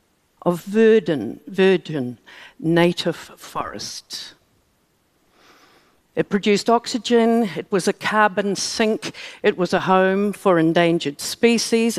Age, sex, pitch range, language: 60-79, female, 170-215 Hz, Korean